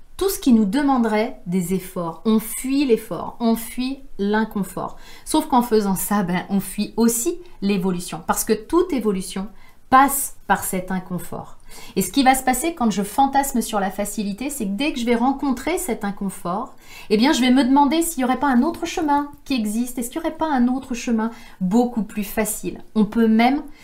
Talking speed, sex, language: 195 wpm, female, French